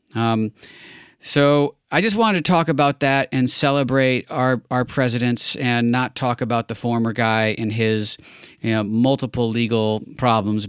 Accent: American